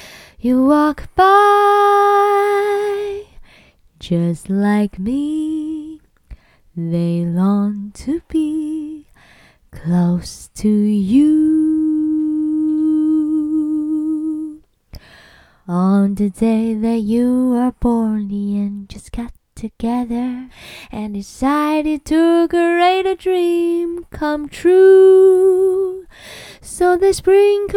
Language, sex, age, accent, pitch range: Chinese, female, 20-39, American, 255-400 Hz